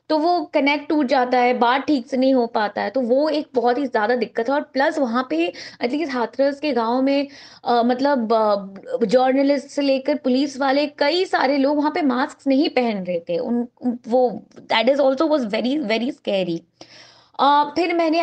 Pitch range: 235-280 Hz